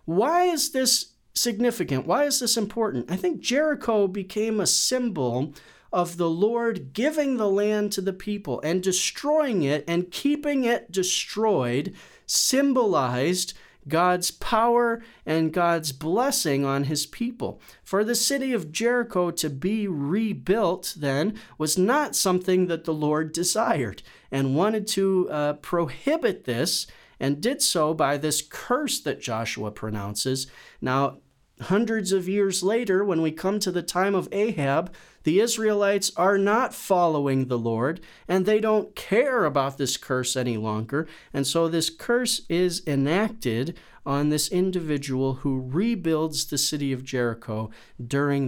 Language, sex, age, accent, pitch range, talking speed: English, male, 40-59, American, 145-215 Hz, 140 wpm